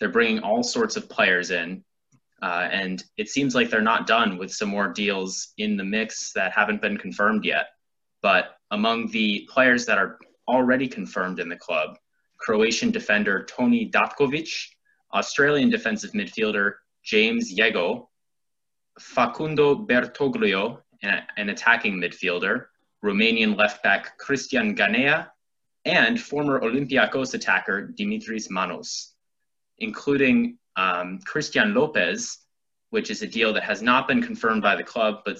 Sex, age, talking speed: male, 20-39, 135 wpm